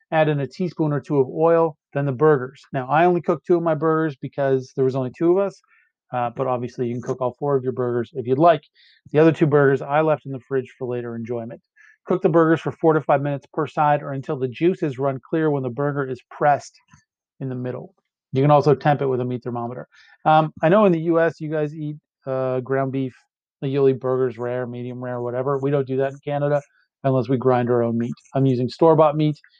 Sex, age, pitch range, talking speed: male, 40-59, 130-160 Hz, 245 wpm